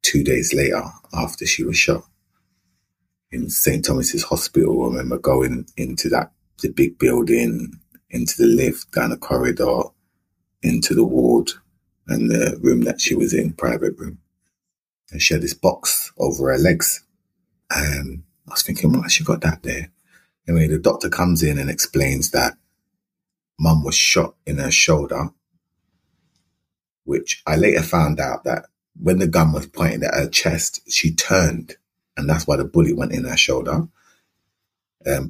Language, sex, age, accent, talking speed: English, male, 30-49, British, 160 wpm